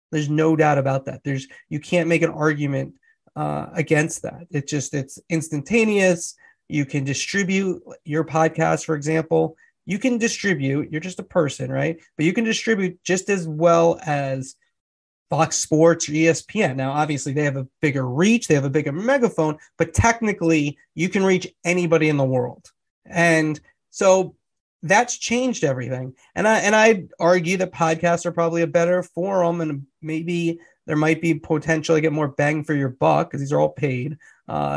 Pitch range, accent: 145-180 Hz, American